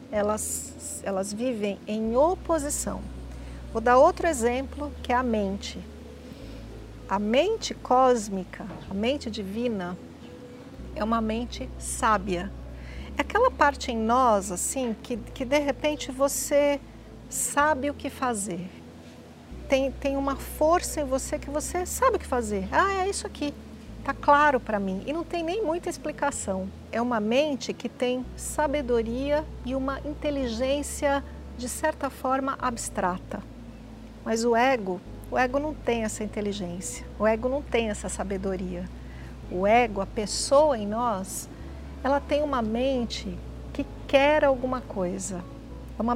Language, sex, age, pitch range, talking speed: Portuguese, female, 50-69, 210-280 Hz, 140 wpm